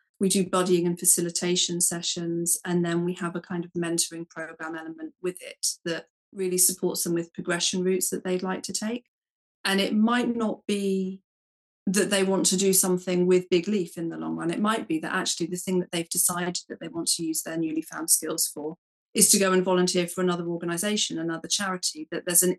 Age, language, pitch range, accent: 40-59, English, 170-195 Hz, British